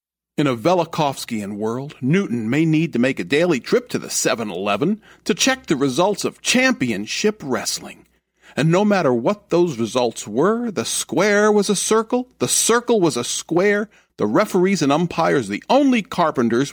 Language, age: English, 50-69